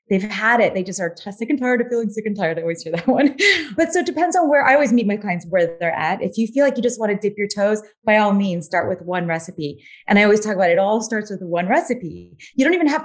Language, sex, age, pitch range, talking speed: English, female, 30-49, 190-250 Hz, 310 wpm